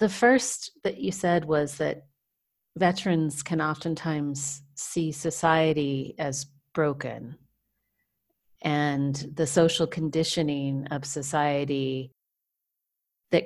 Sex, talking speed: female, 95 wpm